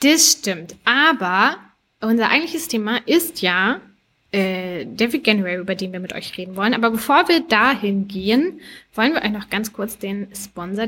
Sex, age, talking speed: female, 20-39, 170 wpm